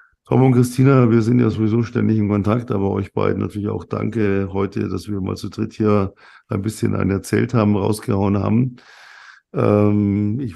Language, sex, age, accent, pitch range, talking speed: German, male, 50-69, German, 100-115 Hz, 180 wpm